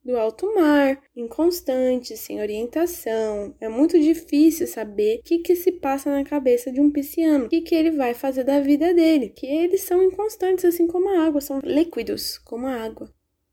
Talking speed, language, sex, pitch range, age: 185 wpm, Portuguese, female, 240-310 Hz, 10-29